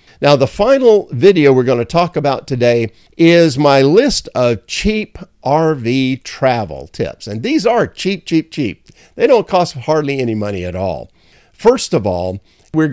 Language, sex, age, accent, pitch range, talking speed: English, male, 50-69, American, 120-175 Hz, 165 wpm